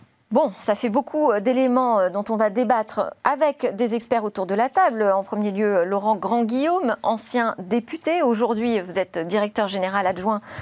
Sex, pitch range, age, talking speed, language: female, 205-260 Hz, 40-59, 165 wpm, French